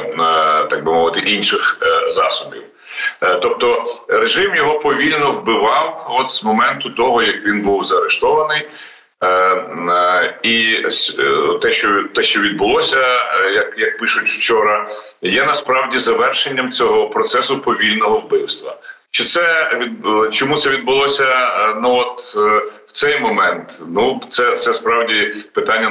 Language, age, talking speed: Ukrainian, 40-59, 110 wpm